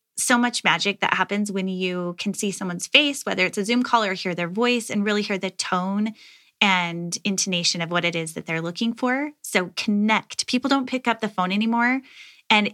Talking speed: 210 wpm